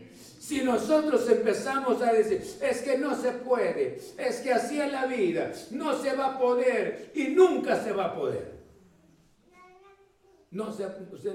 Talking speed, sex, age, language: 150 wpm, male, 60-79, Spanish